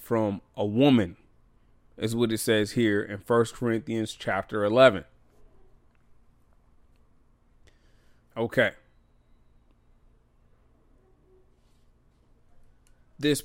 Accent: American